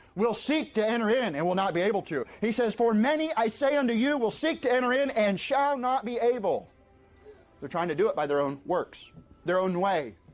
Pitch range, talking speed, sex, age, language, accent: 185-260 Hz, 240 wpm, male, 30-49, English, American